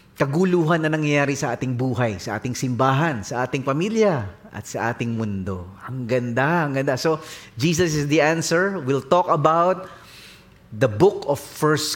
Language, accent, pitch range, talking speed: English, Filipino, 130-185 Hz, 160 wpm